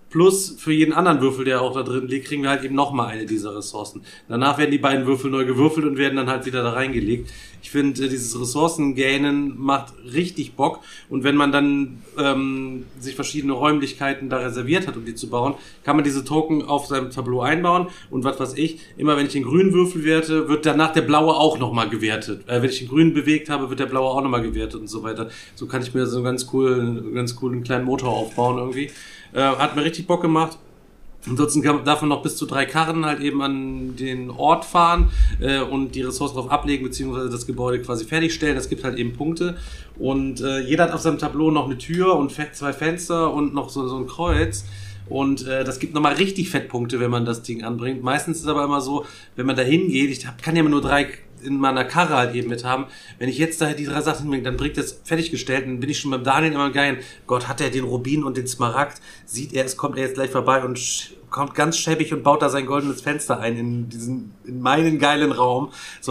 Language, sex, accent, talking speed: German, male, German, 230 wpm